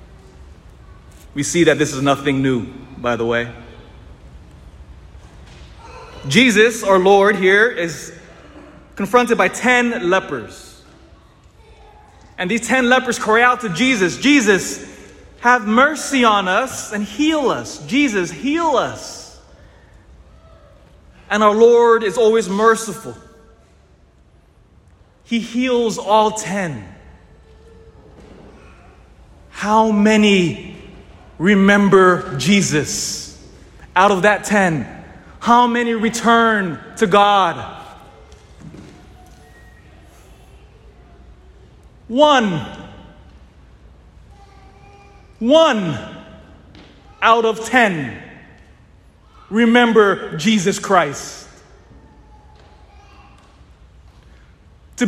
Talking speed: 75 wpm